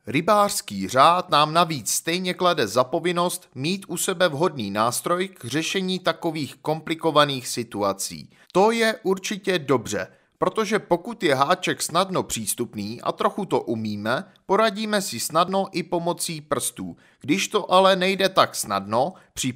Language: Czech